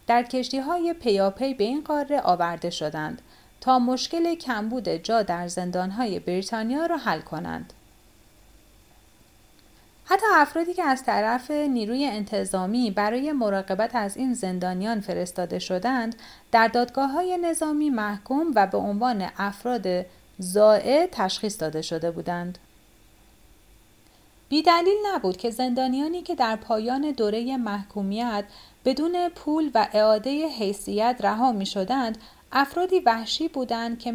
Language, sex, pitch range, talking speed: Persian, female, 180-280 Hz, 120 wpm